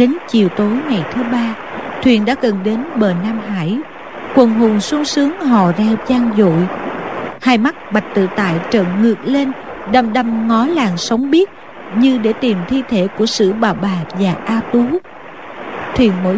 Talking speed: 180 wpm